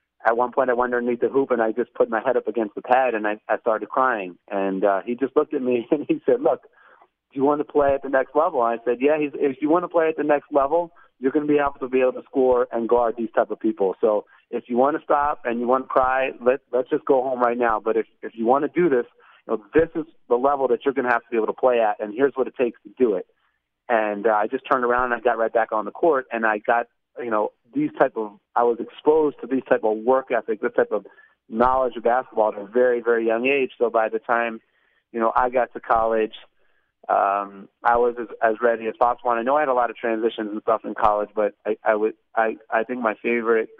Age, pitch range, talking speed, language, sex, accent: 30-49, 110-135 Hz, 275 wpm, English, male, American